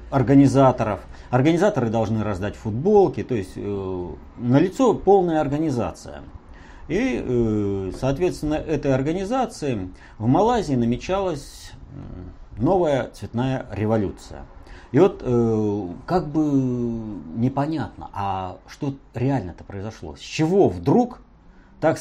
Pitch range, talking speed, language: 95-140 Hz, 100 wpm, Russian